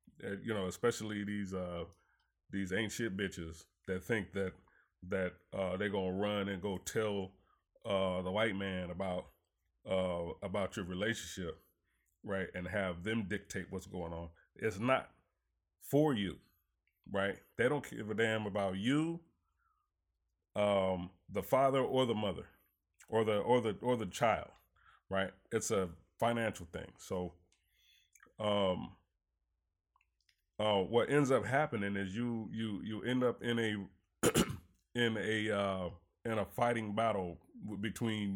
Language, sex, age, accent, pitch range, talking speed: English, male, 30-49, American, 90-110 Hz, 140 wpm